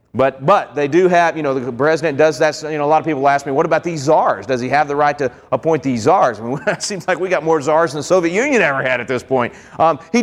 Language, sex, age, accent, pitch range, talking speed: English, male, 30-49, American, 135-175 Hz, 305 wpm